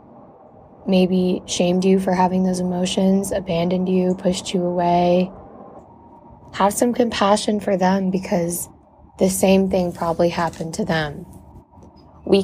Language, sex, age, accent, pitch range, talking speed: English, female, 20-39, American, 165-195 Hz, 125 wpm